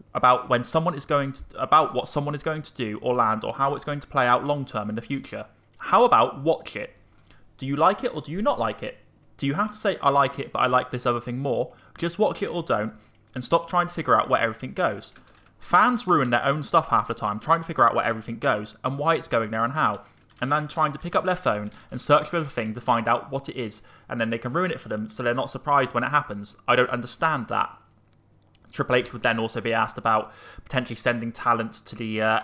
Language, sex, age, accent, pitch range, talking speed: English, male, 20-39, British, 115-155 Hz, 270 wpm